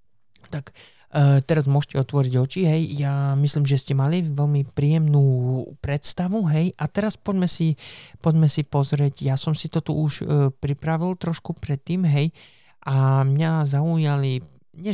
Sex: male